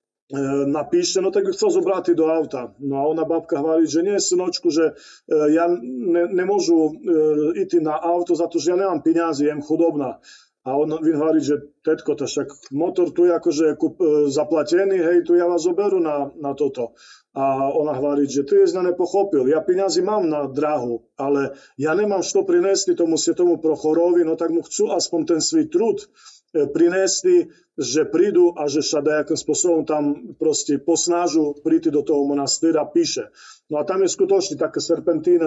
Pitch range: 145-180 Hz